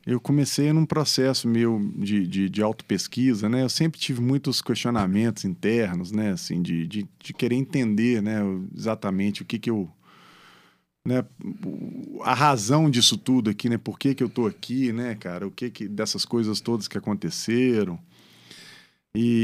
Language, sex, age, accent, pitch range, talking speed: English, male, 40-59, Brazilian, 110-140 Hz, 165 wpm